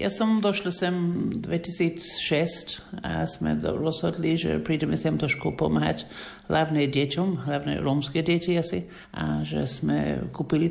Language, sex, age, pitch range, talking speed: Slovak, male, 50-69, 140-175 Hz, 120 wpm